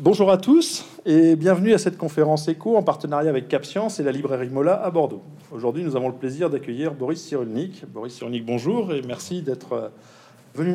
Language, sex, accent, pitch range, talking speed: French, male, French, 130-170 Hz, 190 wpm